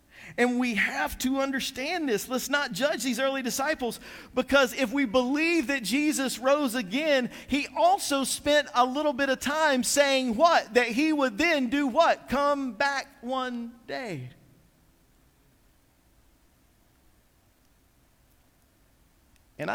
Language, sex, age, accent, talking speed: English, male, 50-69, American, 125 wpm